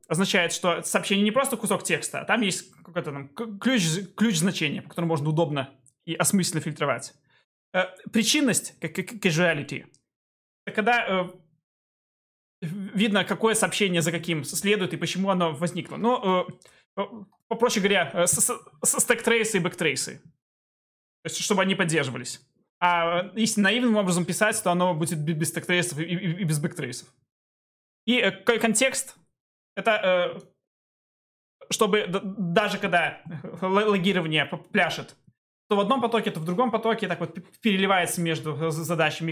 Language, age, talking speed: Russian, 20-39, 120 wpm